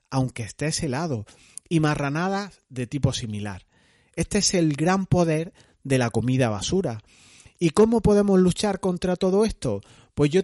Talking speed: 150 wpm